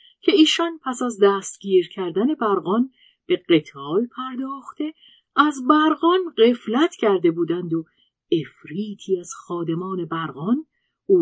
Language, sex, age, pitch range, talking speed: Persian, female, 50-69, 165-275 Hz, 110 wpm